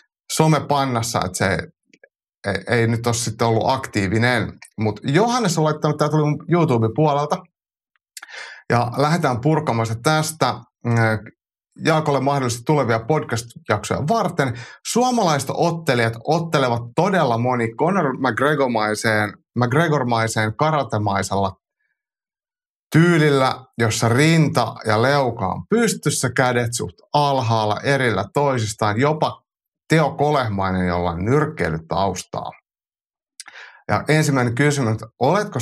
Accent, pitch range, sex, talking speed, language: native, 110-150 Hz, male, 100 wpm, Finnish